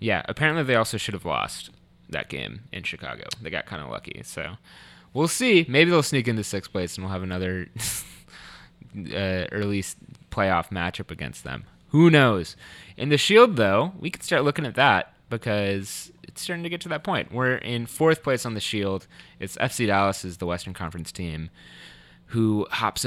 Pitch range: 95-130 Hz